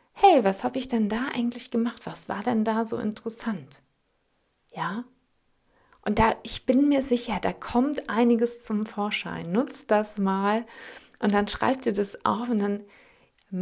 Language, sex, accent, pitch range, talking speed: German, female, German, 195-250 Hz, 165 wpm